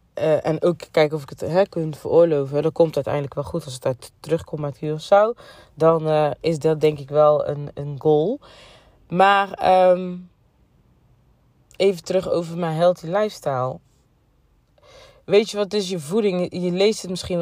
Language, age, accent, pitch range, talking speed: Dutch, 20-39, Dutch, 155-195 Hz, 180 wpm